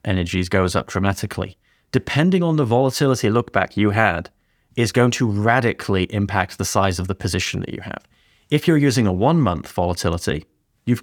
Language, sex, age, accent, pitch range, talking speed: English, male, 30-49, British, 95-110 Hz, 180 wpm